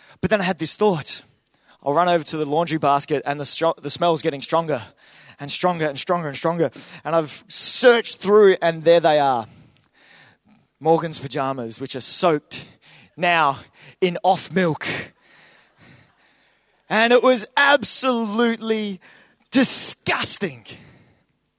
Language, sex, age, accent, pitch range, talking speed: English, male, 20-39, Australian, 165-230 Hz, 130 wpm